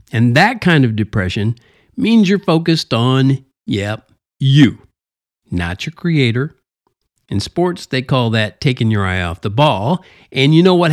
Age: 50-69